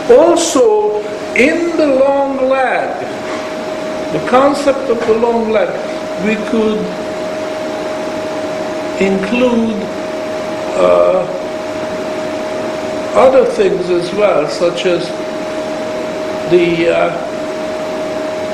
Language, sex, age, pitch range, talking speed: English, male, 60-79, 210-315 Hz, 75 wpm